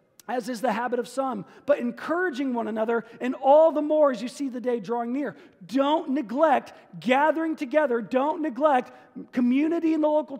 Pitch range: 220-285 Hz